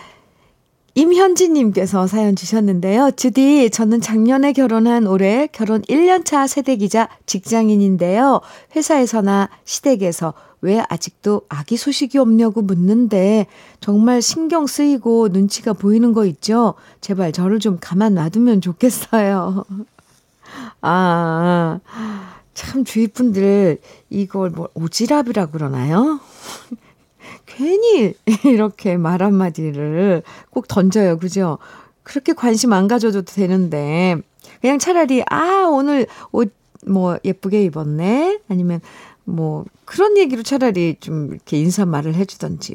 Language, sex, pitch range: Korean, female, 180-245 Hz